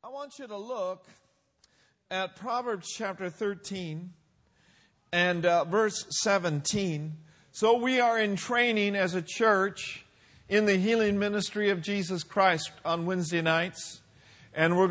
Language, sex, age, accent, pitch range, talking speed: English, male, 50-69, American, 170-205 Hz, 135 wpm